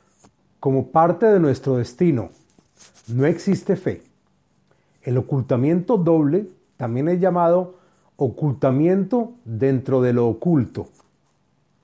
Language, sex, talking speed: Spanish, male, 95 wpm